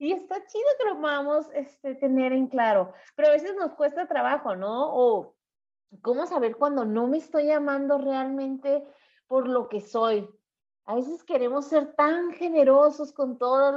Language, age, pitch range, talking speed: Spanish, 30-49, 225-280 Hz, 160 wpm